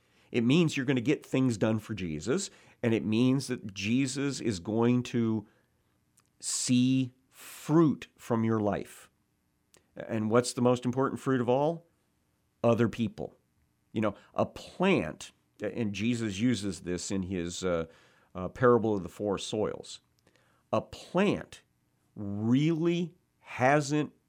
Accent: American